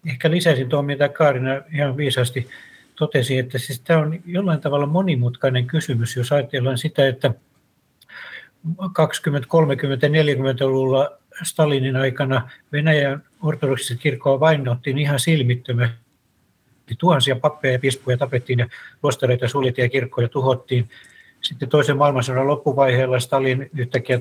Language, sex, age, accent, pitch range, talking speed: Finnish, male, 60-79, native, 130-150 Hz, 115 wpm